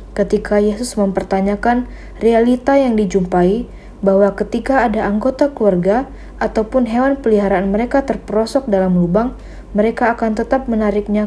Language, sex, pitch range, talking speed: Indonesian, female, 195-245 Hz, 115 wpm